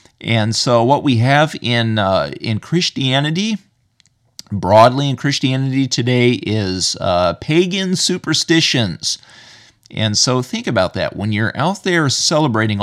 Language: English